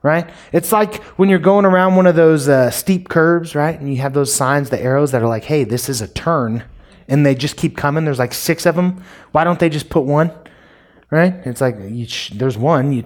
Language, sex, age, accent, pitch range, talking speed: English, male, 30-49, American, 120-155 Hz, 245 wpm